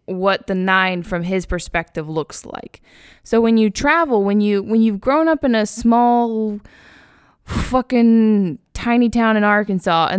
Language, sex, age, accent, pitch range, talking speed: English, female, 10-29, American, 175-215 Hz, 160 wpm